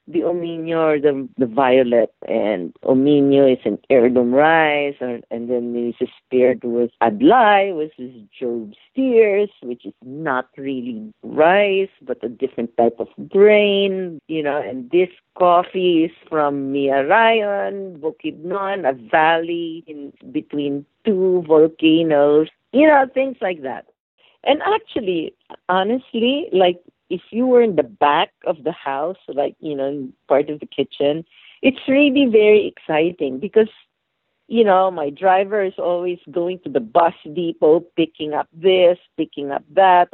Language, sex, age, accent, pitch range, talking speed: English, female, 40-59, Filipino, 140-195 Hz, 145 wpm